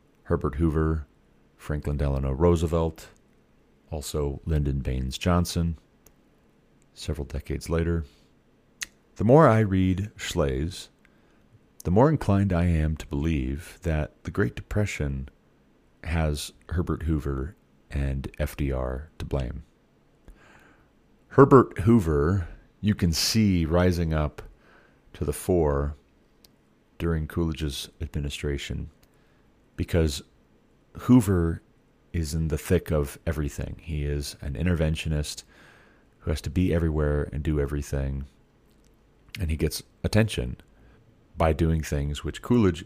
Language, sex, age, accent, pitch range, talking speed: English, male, 40-59, American, 70-90 Hz, 110 wpm